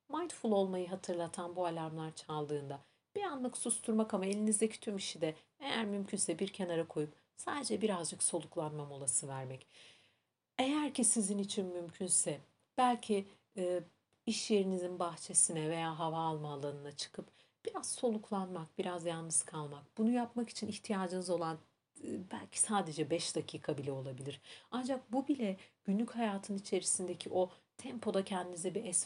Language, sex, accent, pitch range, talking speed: Turkish, female, native, 160-220 Hz, 140 wpm